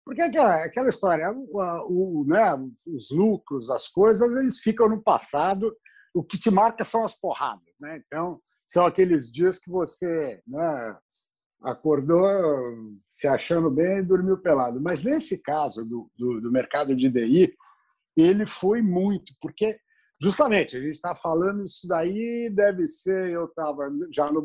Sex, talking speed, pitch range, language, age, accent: male, 150 wpm, 150-220 Hz, Portuguese, 60-79, Brazilian